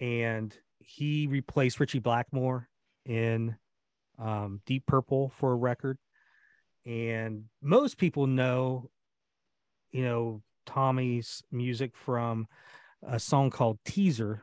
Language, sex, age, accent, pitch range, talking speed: English, male, 40-59, American, 115-140 Hz, 105 wpm